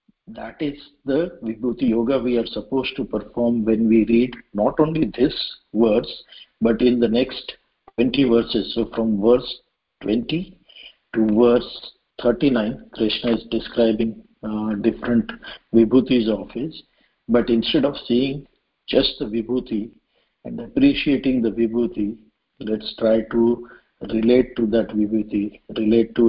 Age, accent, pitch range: 50-69, Indian, 110-120 Hz